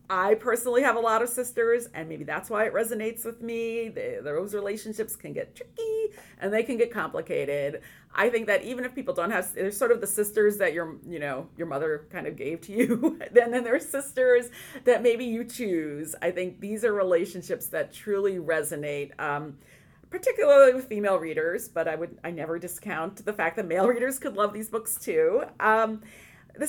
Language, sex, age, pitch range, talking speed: English, female, 40-59, 165-235 Hz, 200 wpm